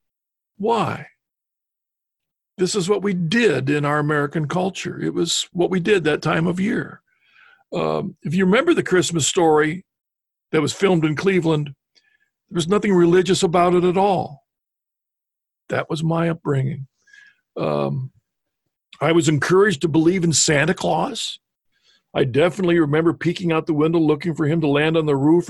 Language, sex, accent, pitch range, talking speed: English, male, American, 150-180 Hz, 160 wpm